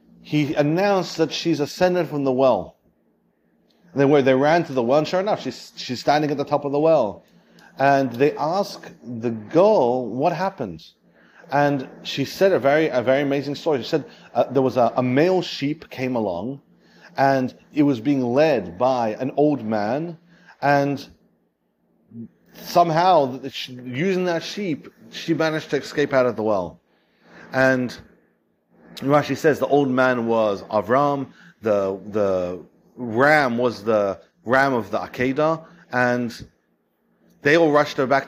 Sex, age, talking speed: male, 40-59, 155 wpm